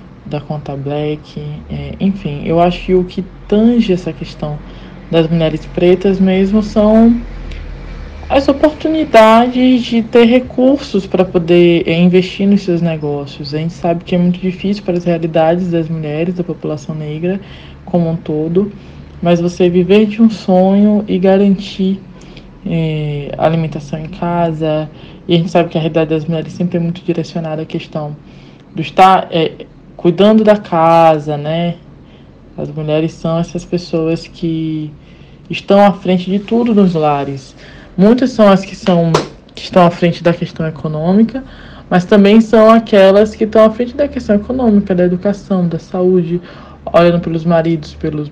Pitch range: 160-195 Hz